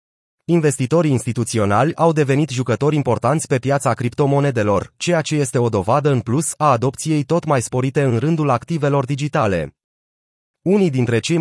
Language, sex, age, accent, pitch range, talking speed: Romanian, male, 30-49, native, 120-150 Hz, 145 wpm